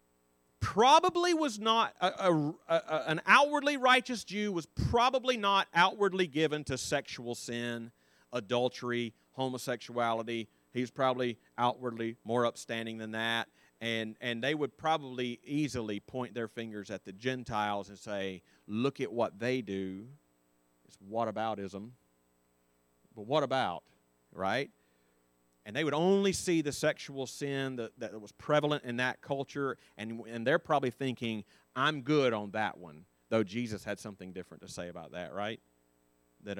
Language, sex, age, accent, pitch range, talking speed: English, male, 40-59, American, 95-145 Hz, 145 wpm